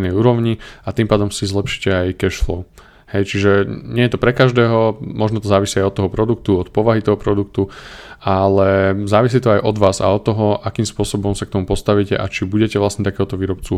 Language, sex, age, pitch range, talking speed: Slovak, male, 20-39, 95-110 Hz, 205 wpm